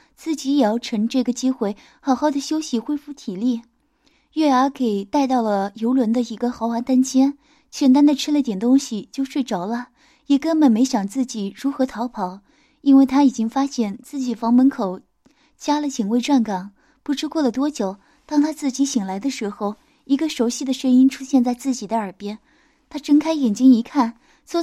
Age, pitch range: 20-39, 225-290 Hz